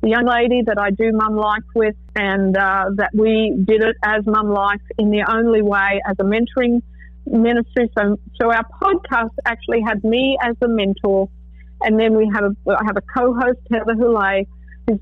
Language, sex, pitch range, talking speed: English, female, 210-235 Hz, 185 wpm